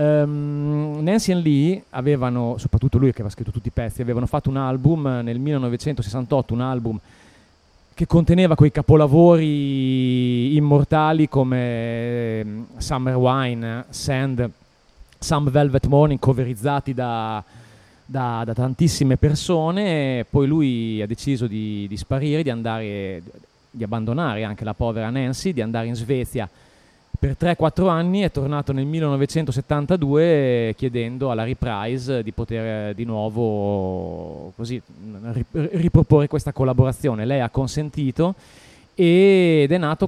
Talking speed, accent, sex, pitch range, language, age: 125 wpm, native, male, 115-150 Hz, Italian, 30-49